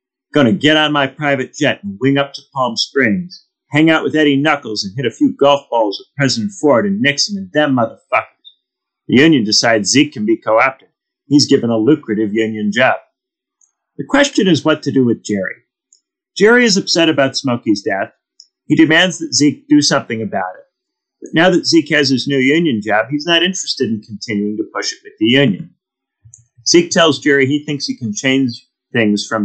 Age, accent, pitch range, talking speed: 40-59, American, 115-195 Hz, 200 wpm